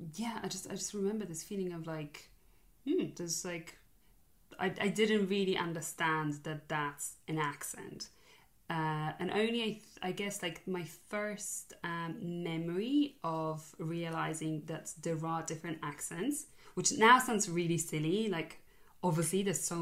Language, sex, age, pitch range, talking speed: English, female, 20-39, 160-190 Hz, 150 wpm